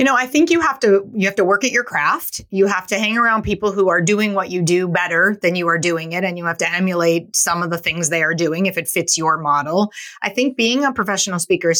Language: English